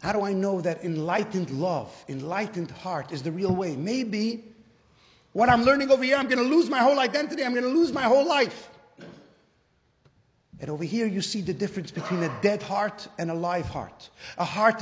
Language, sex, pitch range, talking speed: English, male, 200-270 Hz, 195 wpm